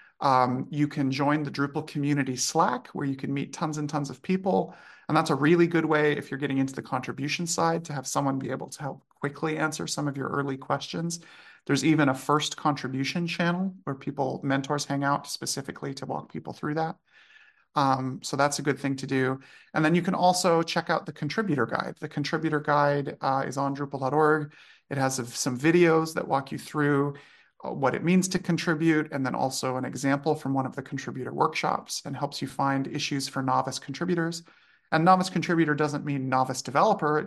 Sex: male